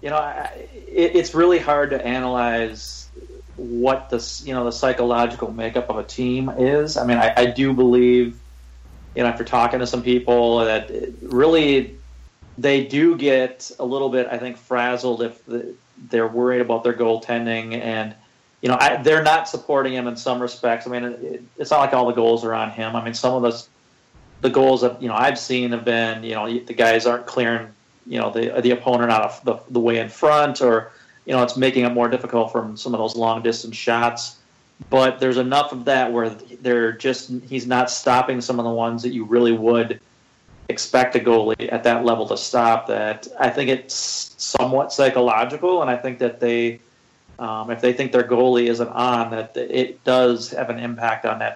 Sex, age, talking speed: male, 40-59, 200 wpm